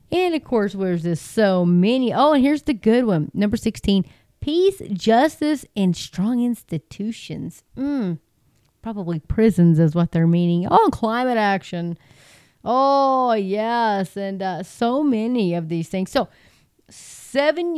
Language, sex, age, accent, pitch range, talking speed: English, female, 30-49, American, 175-235 Hz, 140 wpm